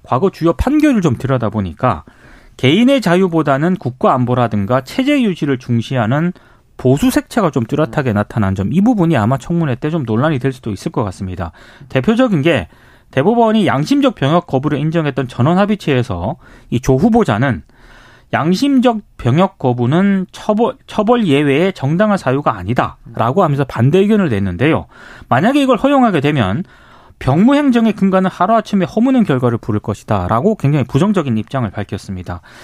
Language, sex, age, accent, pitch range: Korean, male, 30-49, native, 125-205 Hz